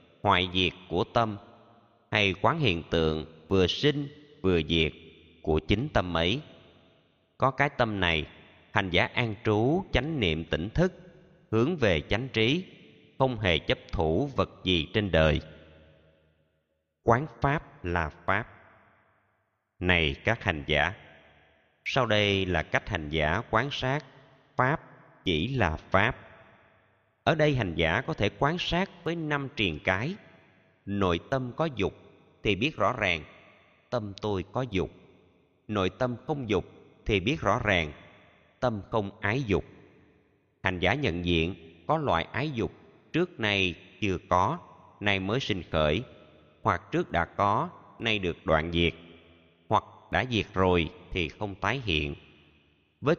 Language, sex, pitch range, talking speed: Vietnamese, male, 85-125 Hz, 145 wpm